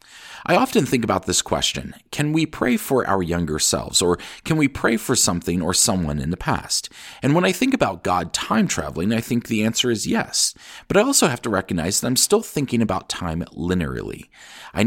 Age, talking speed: 40-59, 205 wpm